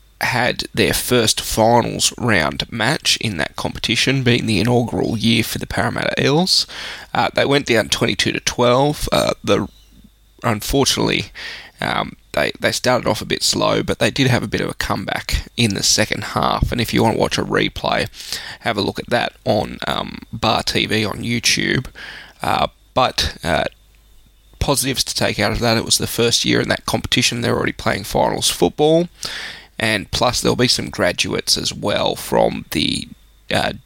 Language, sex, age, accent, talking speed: English, male, 20-39, Australian, 180 wpm